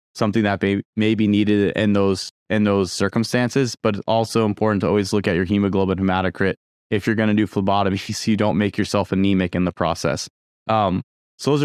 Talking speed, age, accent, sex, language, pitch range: 205 wpm, 20-39, American, male, English, 105-120 Hz